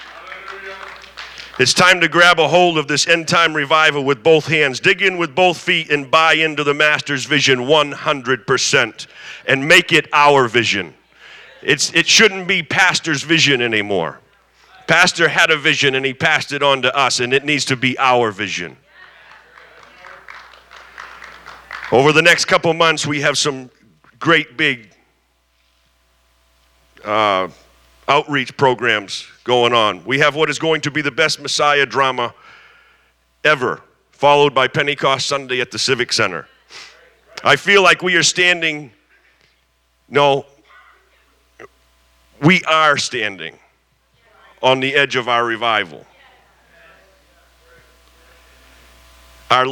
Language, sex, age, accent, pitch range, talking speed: English, male, 50-69, American, 120-160 Hz, 130 wpm